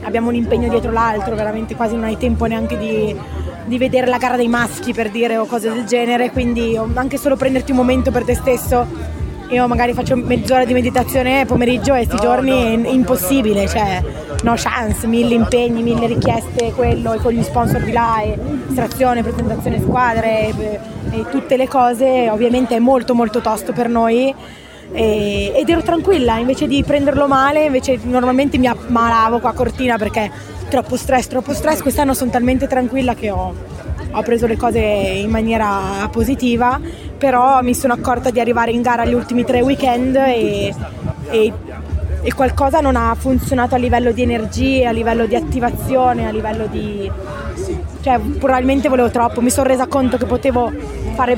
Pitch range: 230-260 Hz